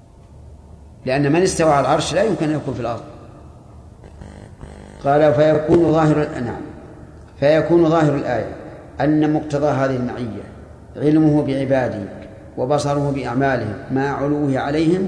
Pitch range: 125-150 Hz